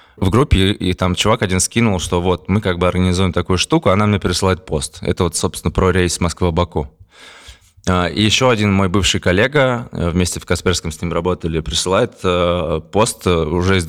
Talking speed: 180 wpm